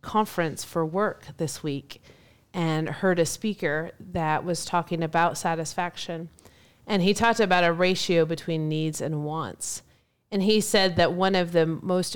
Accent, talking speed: American, 160 wpm